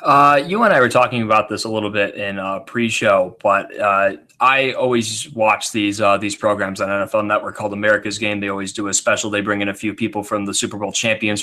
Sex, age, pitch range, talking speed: male, 20-39, 100-115 Hz, 235 wpm